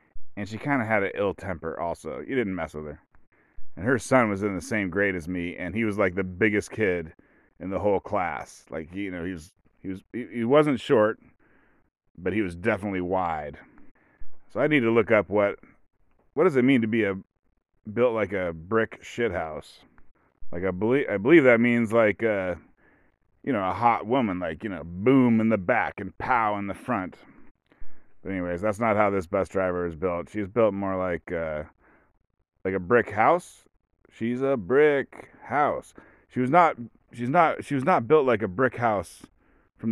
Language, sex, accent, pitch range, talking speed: English, male, American, 95-120 Hz, 200 wpm